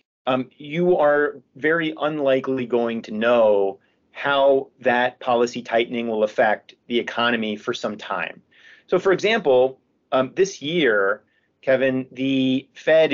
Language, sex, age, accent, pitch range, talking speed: English, male, 40-59, American, 125-170 Hz, 130 wpm